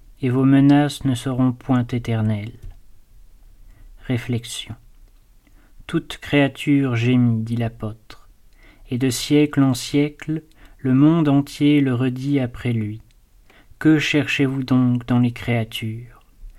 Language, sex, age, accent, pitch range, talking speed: French, male, 40-59, French, 115-140 Hz, 110 wpm